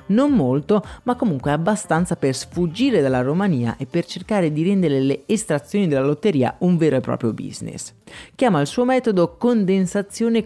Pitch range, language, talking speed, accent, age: 140-205 Hz, Italian, 160 wpm, native, 30-49